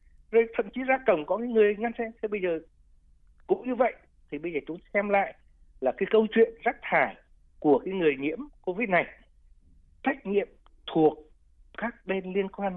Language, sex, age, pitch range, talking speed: Vietnamese, male, 60-79, 150-230 Hz, 190 wpm